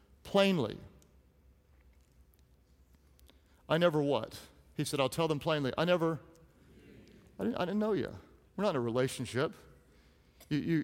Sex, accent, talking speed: male, American, 140 wpm